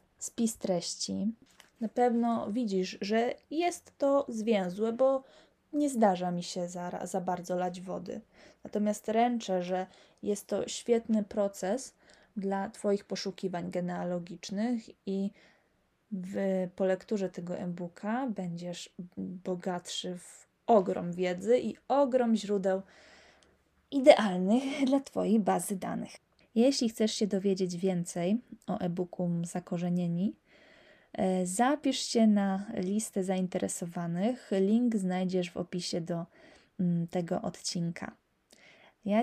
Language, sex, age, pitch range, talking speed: Polish, female, 20-39, 180-220 Hz, 105 wpm